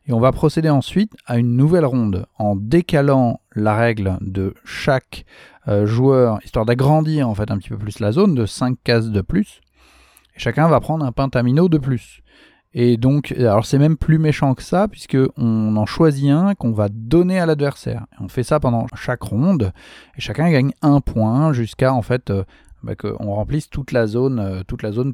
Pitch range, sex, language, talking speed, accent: 105-140 Hz, male, French, 200 wpm, French